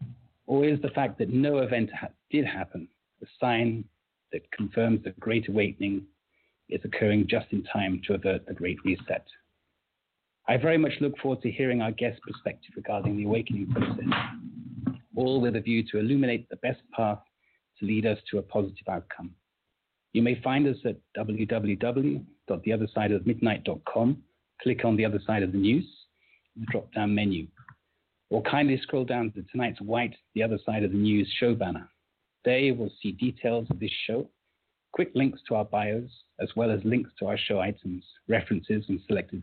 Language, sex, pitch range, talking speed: English, male, 105-125 Hz, 175 wpm